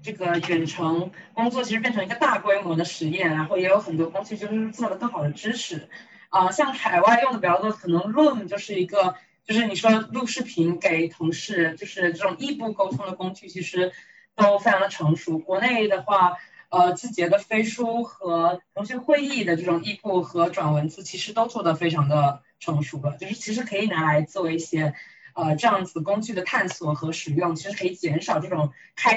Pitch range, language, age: 165-220 Hz, Chinese, 20-39